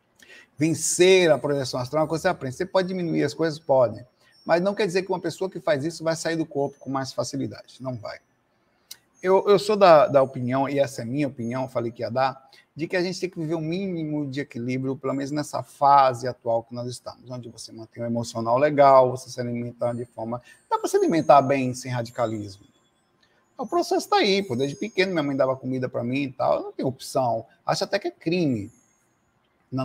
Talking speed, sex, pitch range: 225 wpm, male, 130-165 Hz